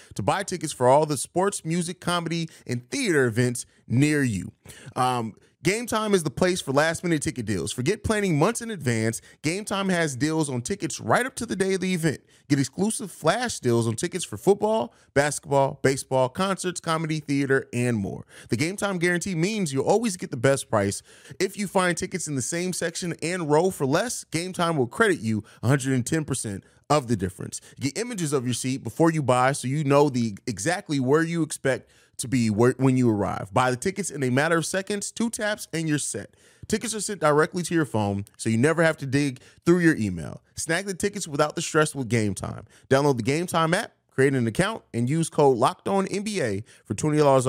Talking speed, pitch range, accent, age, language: 210 wpm, 125-175 Hz, American, 30-49, English